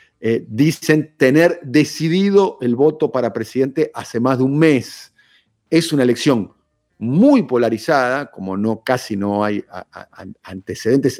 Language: Spanish